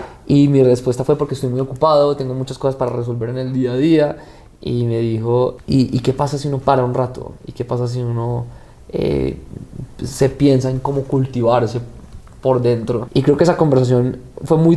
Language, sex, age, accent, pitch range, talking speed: Spanish, male, 20-39, Colombian, 120-135 Hz, 205 wpm